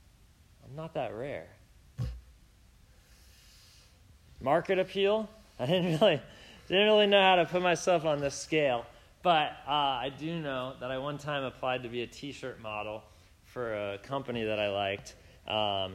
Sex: male